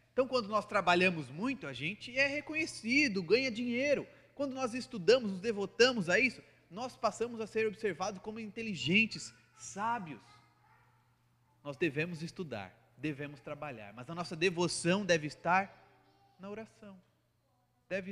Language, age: Portuguese, 30-49